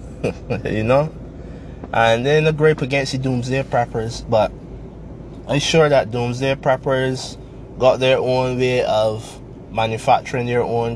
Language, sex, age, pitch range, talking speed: English, male, 20-39, 115-135 Hz, 130 wpm